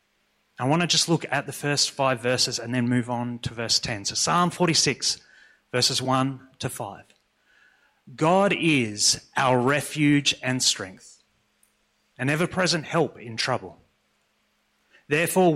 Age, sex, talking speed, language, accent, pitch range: 30-49, male, 140 wpm, English, Australian, 125-155 Hz